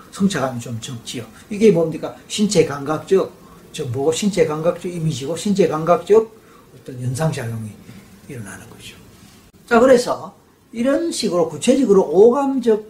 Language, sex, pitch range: Korean, male, 140-200 Hz